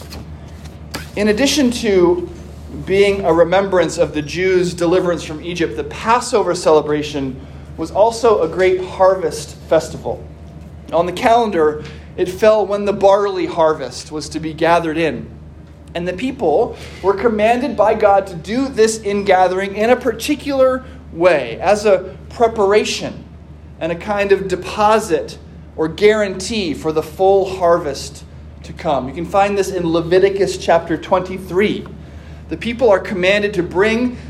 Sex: male